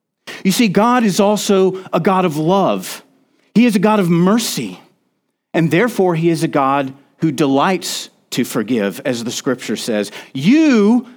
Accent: American